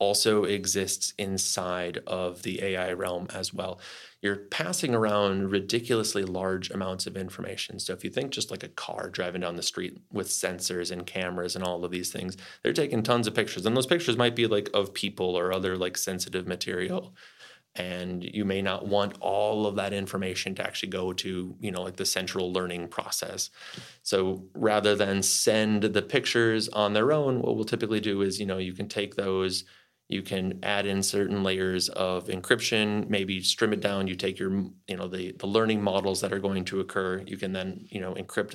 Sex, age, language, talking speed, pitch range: male, 30-49, English, 200 wpm, 95-105 Hz